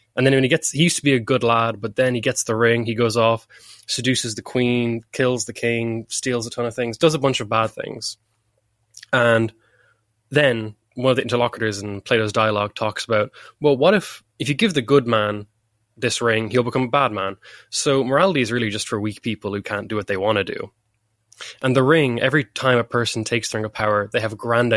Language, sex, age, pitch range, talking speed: English, male, 10-29, 110-125 Hz, 235 wpm